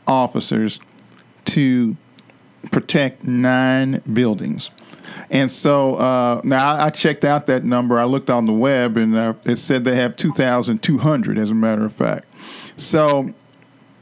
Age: 50-69